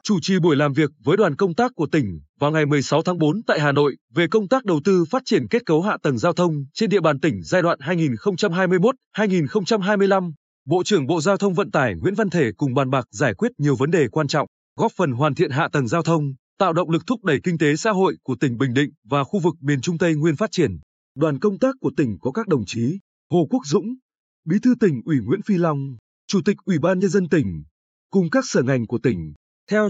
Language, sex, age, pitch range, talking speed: Vietnamese, male, 20-39, 145-200 Hz, 245 wpm